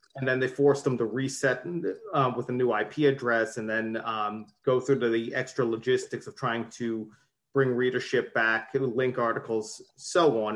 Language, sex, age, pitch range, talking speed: Turkish, male, 30-49, 110-135 Hz, 195 wpm